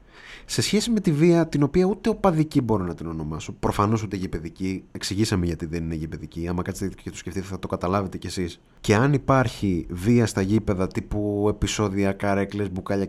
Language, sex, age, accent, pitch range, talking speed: Greek, male, 30-49, native, 90-135 Hz, 190 wpm